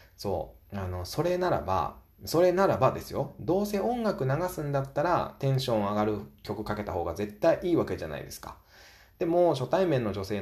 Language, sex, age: Japanese, male, 20-39